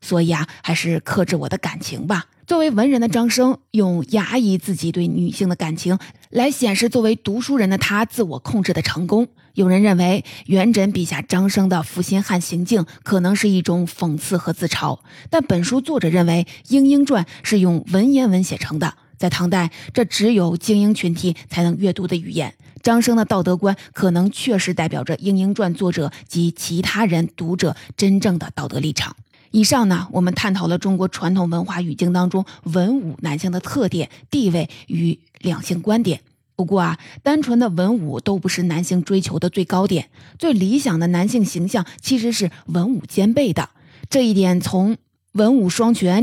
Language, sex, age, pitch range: Chinese, female, 20-39, 170-210 Hz